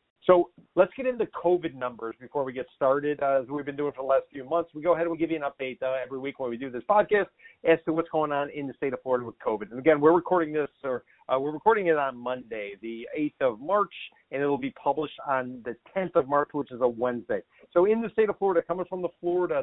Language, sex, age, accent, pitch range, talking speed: English, male, 50-69, American, 130-170 Hz, 270 wpm